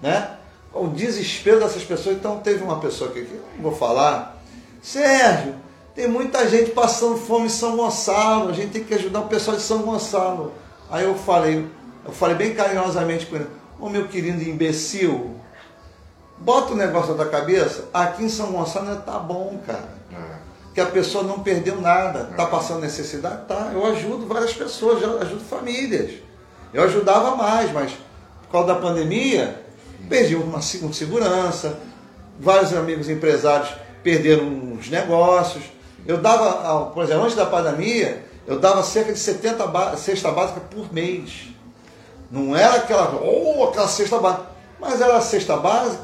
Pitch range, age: 165-220 Hz, 40-59